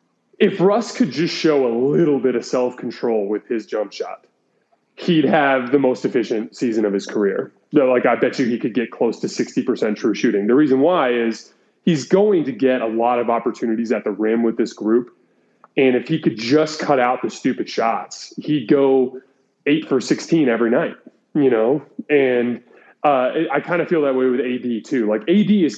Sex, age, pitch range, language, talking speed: male, 20-39, 120-155 Hz, English, 200 wpm